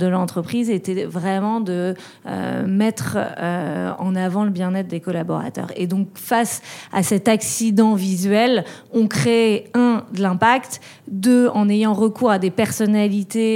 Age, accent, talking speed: 30-49, French, 145 wpm